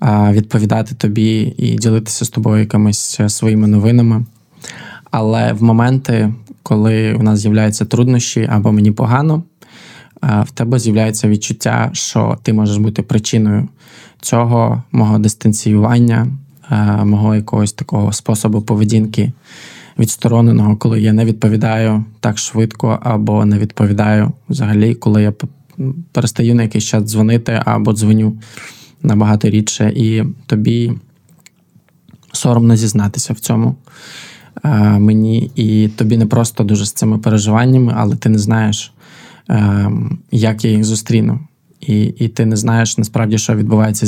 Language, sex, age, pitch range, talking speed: Ukrainian, male, 20-39, 105-120 Hz, 125 wpm